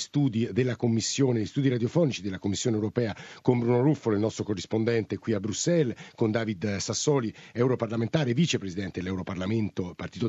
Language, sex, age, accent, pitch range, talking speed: Italian, male, 50-69, native, 115-135 Hz, 140 wpm